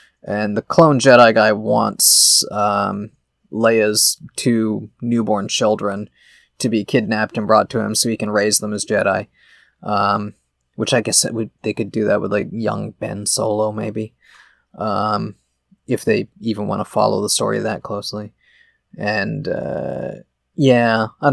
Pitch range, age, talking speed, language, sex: 110-135 Hz, 20-39, 160 wpm, English, male